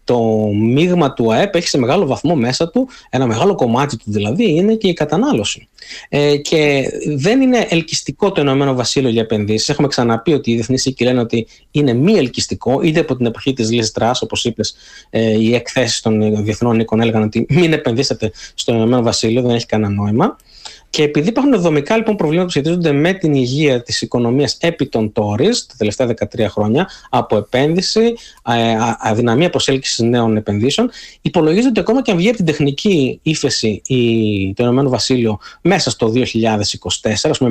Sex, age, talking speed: male, 20-39, 175 wpm